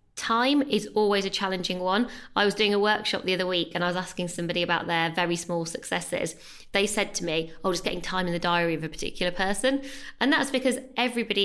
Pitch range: 175-210 Hz